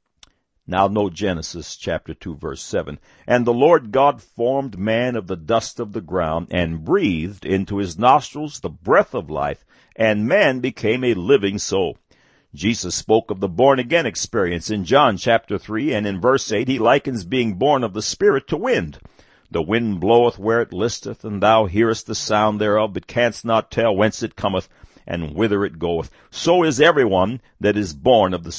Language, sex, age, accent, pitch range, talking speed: English, male, 60-79, American, 100-125 Hz, 185 wpm